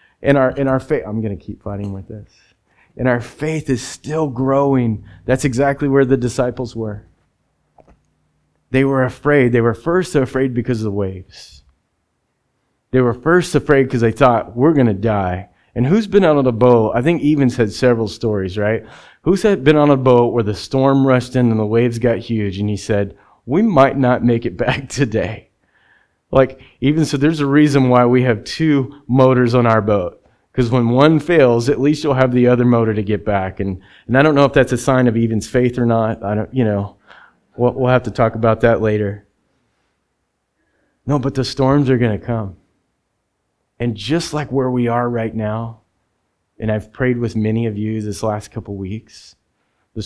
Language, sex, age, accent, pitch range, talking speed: English, male, 30-49, American, 110-135 Hz, 200 wpm